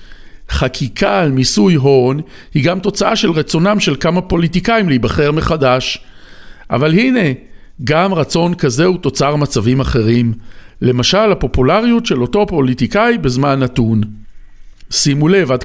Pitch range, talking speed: 120-185 Hz, 125 wpm